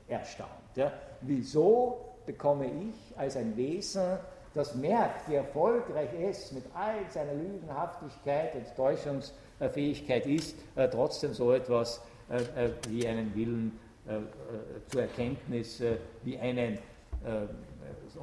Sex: male